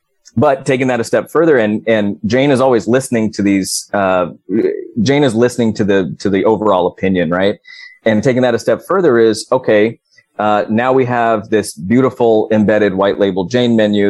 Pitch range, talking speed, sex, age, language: 100-120 Hz, 185 wpm, male, 30-49, English